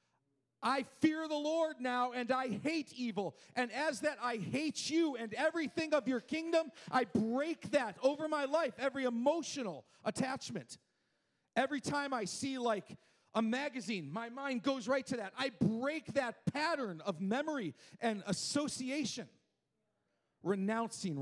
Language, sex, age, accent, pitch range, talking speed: English, male, 40-59, American, 185-270 Hz, 145 wpm